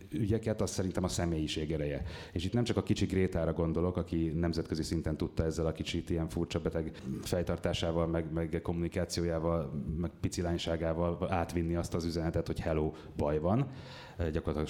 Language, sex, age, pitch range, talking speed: Hungarian, male, 30-49, 85-100 Hz, 160 wpm